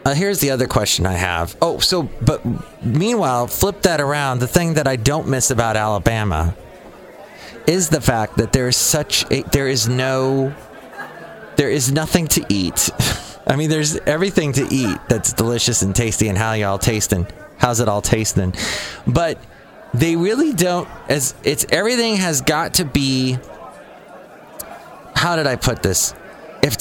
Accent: American